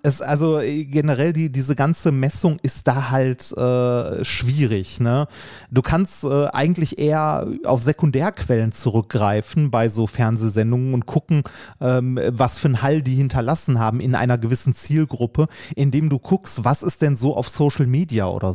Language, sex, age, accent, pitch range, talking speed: German, male, 30-49, German, 125-155 Hz, 160 wpm